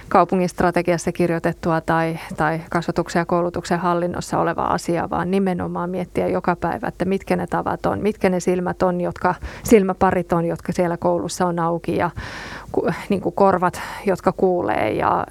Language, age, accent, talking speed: Finnish, 30-49, native, 155 wpm